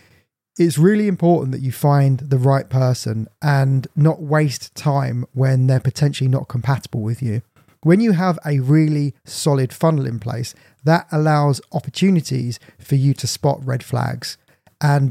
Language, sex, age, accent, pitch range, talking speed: English, male, 20-39, British, 130-155 Hz, 155 wpm